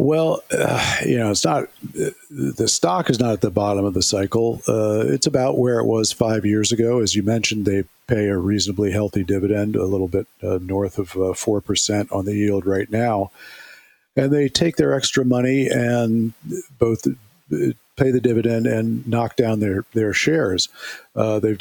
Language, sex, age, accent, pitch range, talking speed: English, male, 50-69, American, 100-125 Hz, 180 wpm